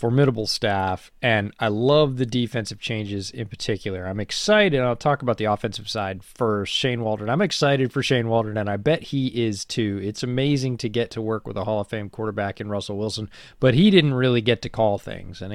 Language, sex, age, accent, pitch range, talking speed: English, male, 30-49, American, 105-135 Hz, 215 wpm